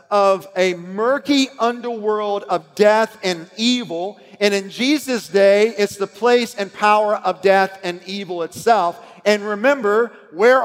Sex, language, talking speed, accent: male, English, 140 wpm, American